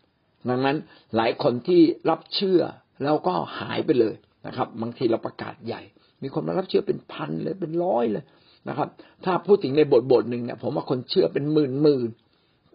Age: 60-79